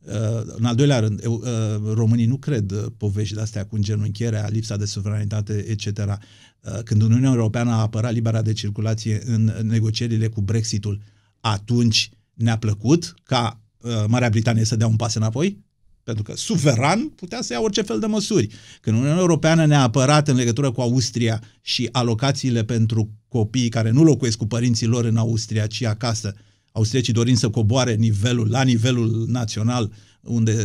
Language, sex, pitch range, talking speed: Romanian, male, 110-125 Hz, 165 wpm